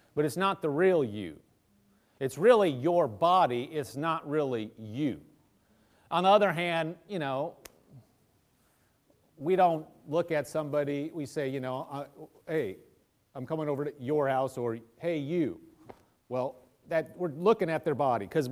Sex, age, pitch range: male, 40-59, 125-165 Hz